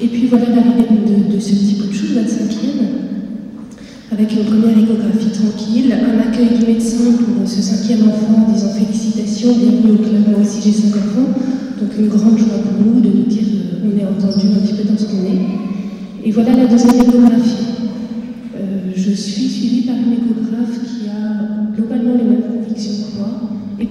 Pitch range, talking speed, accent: 210-235 Hz, 190 wpm, French